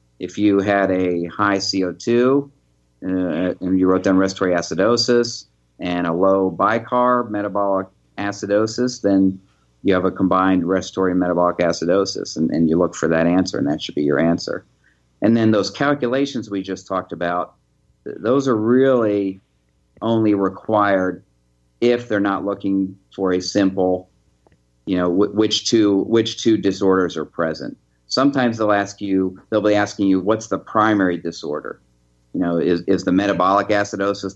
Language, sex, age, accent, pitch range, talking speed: English, male, 50-69, American, 85-105 Hz, 150 wpm